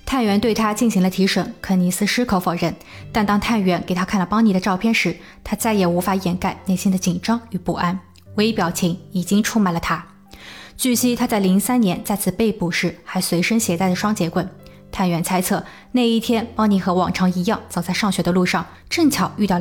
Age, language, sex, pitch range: 20-39, Chinese, female, 185-220 Hz